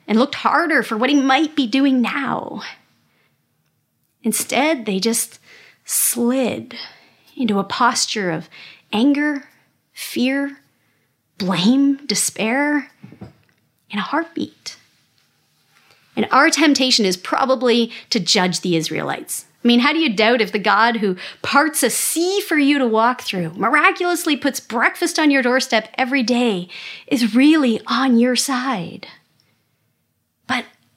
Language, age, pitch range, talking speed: English, 40-59, 210-280 Hz, 130 wpm